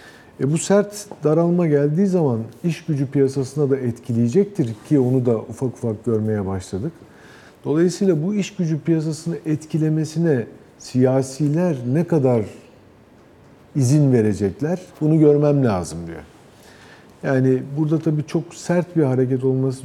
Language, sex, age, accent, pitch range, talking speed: Turkish, male, 50-69, native, 115-160 Hz, 120 wpm